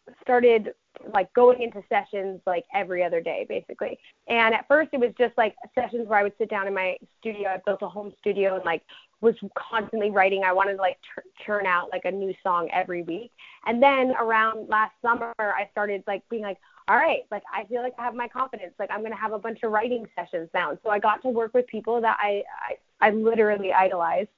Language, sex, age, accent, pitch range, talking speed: English, female, 20-39, American, 185-230 Hz, 230 wpm